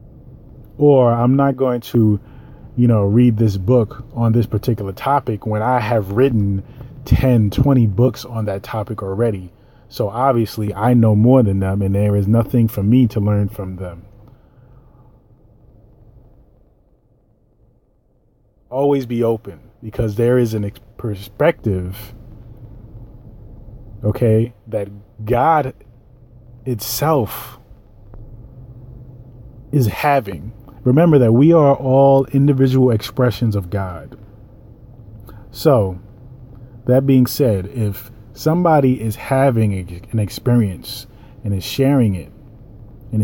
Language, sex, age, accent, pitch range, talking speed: English, male, 30-49, American, 110-125 Hz, 110 wpm